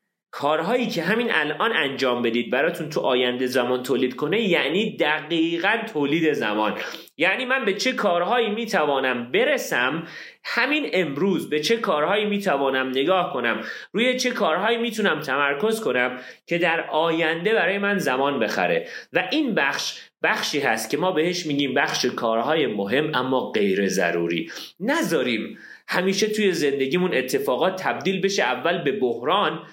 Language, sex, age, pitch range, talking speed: Persian, male, 30-49, 140-230 Hz, 140 wpm